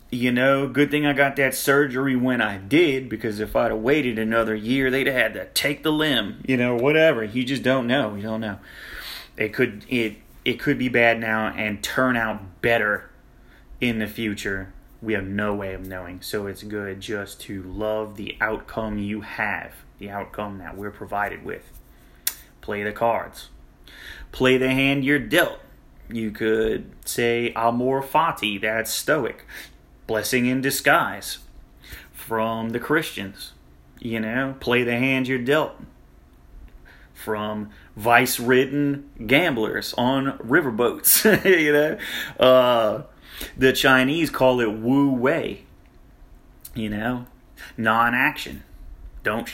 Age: 30-49